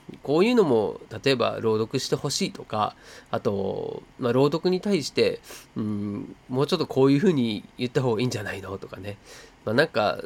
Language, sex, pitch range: Japanese, male, 110-155 Hz